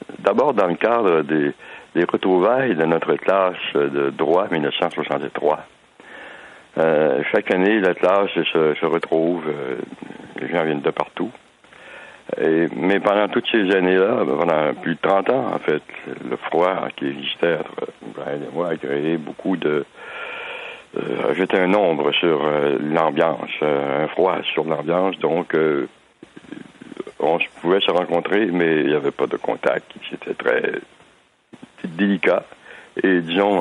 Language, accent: French, French